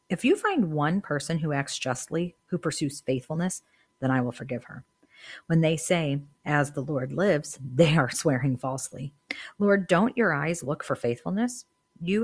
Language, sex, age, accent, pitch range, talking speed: English, female, 40-59, American, 135-160 Hz, 170 wpm